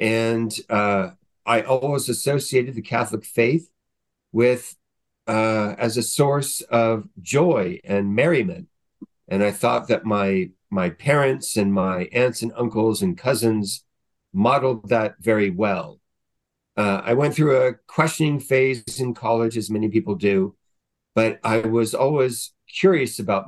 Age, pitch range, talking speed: 50-69, 105-130 Hz, 140 wpm